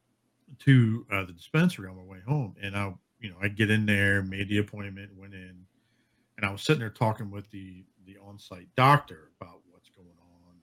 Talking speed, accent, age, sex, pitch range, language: 205 wpm, American, 50-69, male, 95-120 Hz, English